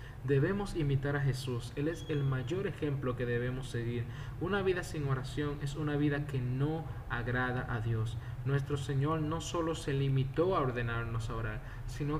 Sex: male